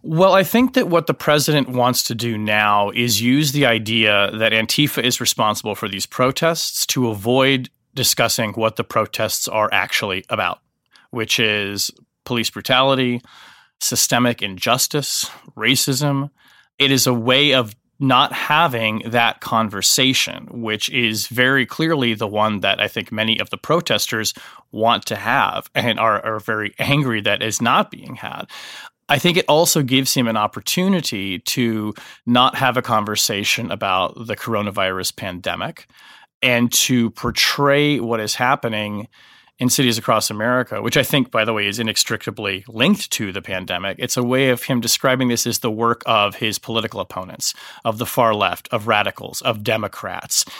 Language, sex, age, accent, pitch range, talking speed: English, male, 30-49, American, 110-130 Hz, 160 wpm